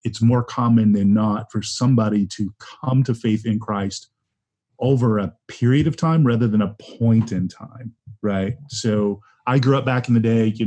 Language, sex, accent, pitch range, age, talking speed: English, male, American, 105-120 Hz, 30-49, 190 wpm